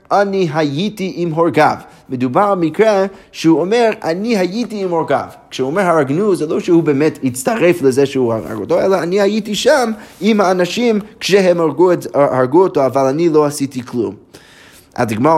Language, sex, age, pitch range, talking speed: Hebrew, male, 30-49, 130-175 Hz, 155 wpm